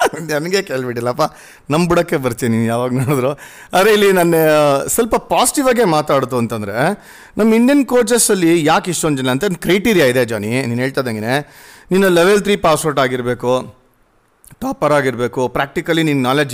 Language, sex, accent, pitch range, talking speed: Kannada, male, native, 135-190 Hz, 140 wpm